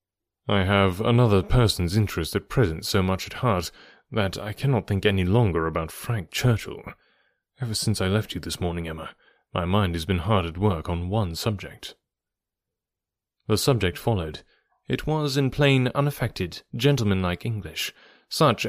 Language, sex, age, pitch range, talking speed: English, male, 30-49, 95-130 Hz, 155 wpm